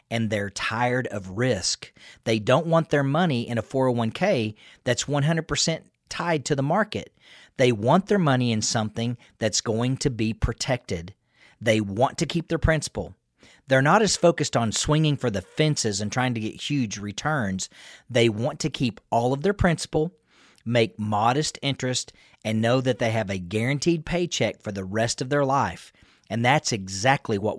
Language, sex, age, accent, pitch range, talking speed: English, male, 40-59, American, 110-145 Hz, 175 wpm